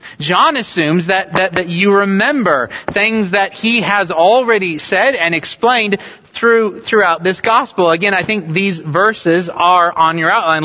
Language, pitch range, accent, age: English, 180-230 Hz, American, 30-49